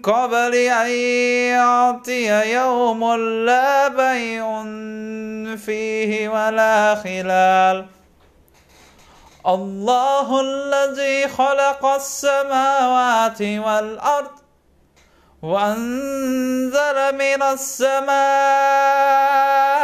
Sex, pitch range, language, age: male, 230-285 Hz, Indonesian, 20-39